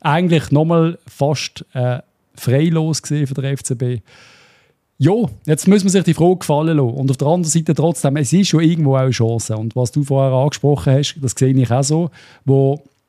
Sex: male